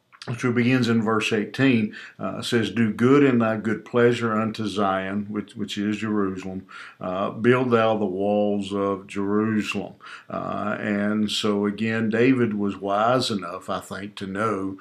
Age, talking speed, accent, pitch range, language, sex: 50-69, 155 wpm, American, 100-115 Hz, English, male